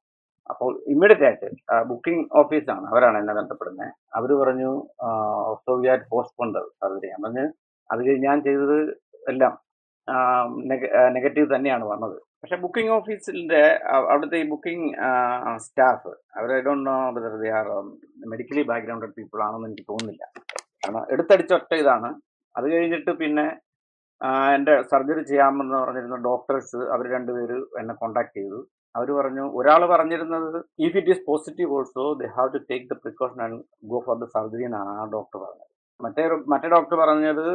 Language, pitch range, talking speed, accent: Malayalam, 125-160 Hz, 130 wpm, native